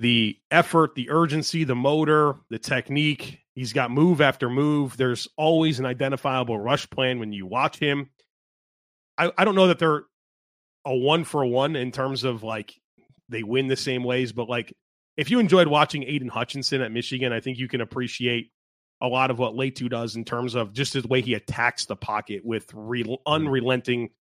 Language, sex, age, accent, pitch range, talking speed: English, male, 30-49, American, 125-160 Hz, 180 wpm